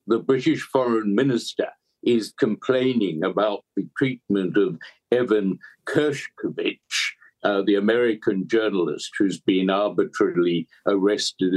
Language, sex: English, male